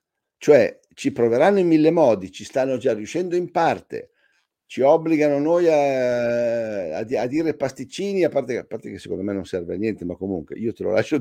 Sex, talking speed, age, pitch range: male, 200 wpm, 50-69, 120-175 Hz